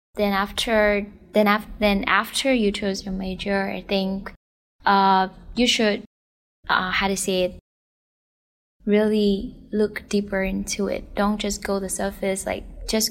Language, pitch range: English, 185-205 Hz